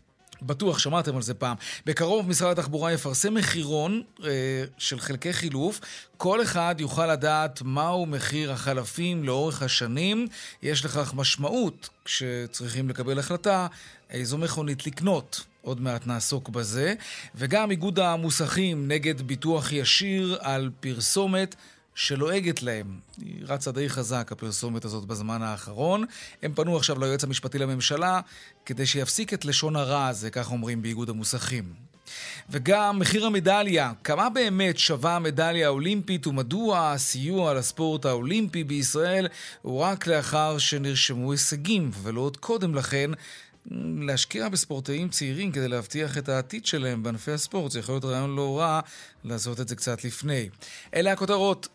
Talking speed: 135 wpm